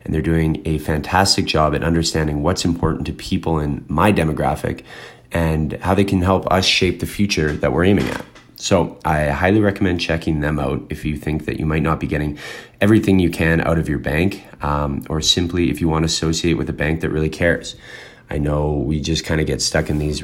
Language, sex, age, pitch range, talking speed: English, male, 20-39, 80-100 Hz, 220 wpm